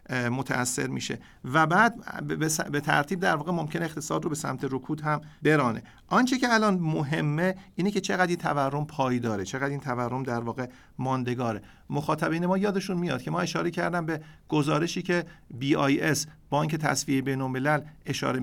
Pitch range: 130-170 Hz